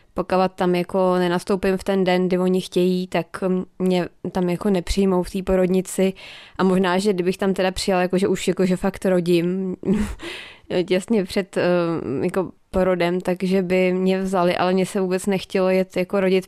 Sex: female